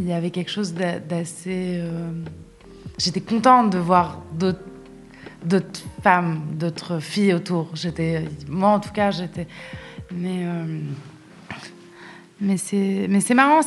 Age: 20-39